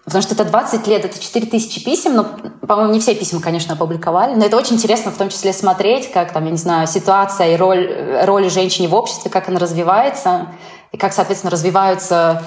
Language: Russian